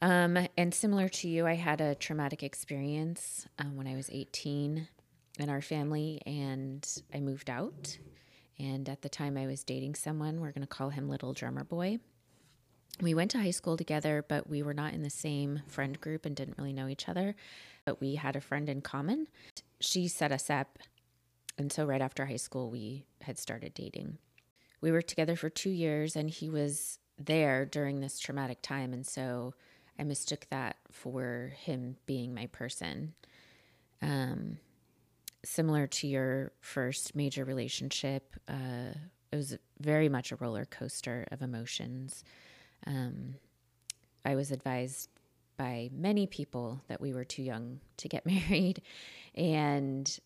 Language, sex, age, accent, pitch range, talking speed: English, female, 20-39, American, 130-155 Hz, 165 wpm